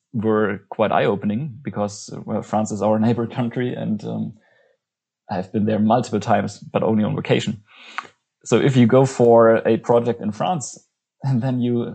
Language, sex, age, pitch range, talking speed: English, male, 20-39, 115-130 Hz, 165 wpm